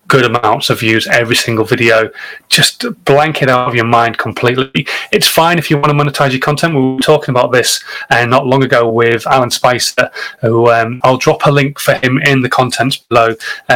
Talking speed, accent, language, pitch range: 220 wpm, British, English, 115-140 Hz